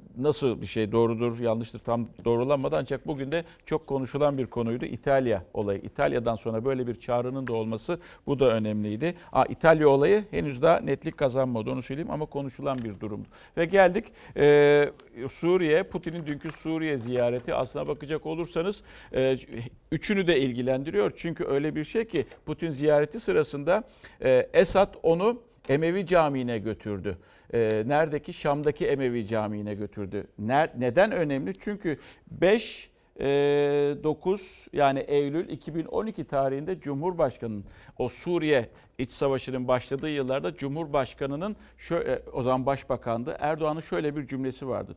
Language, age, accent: Turkish, 50-69, native